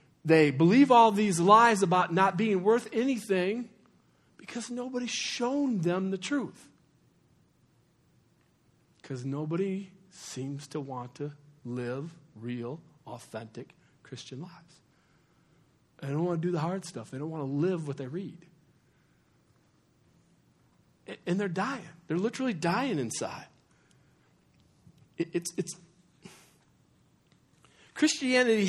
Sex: male